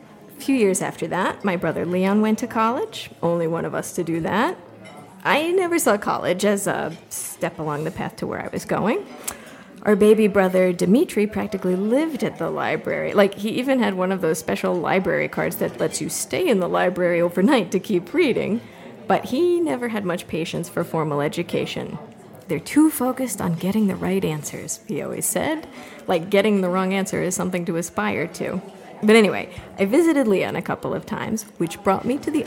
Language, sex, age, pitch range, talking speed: English, female, 40-59, 180-255 Hz, 200 wpm